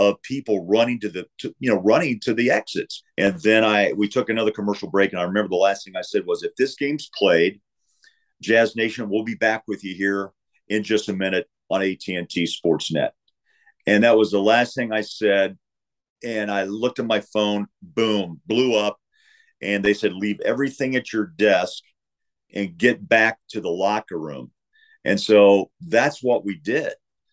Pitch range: 100-115 Hz